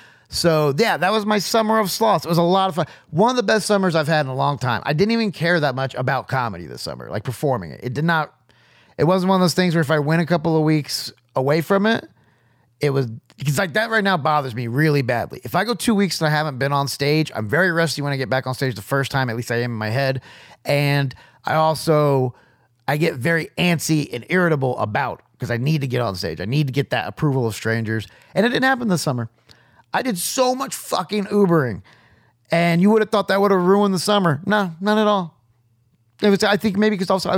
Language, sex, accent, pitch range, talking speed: English, male, American, 130-185 Hz, 255 wpm